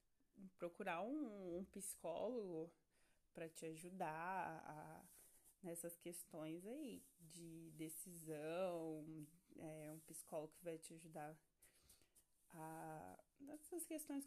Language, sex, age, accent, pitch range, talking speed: Portuguese, female, 20-39, Brazilian, 170-225 Hz, 95 wpm